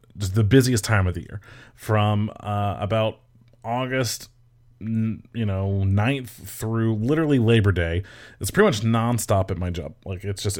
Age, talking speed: 30-49, 160 wpm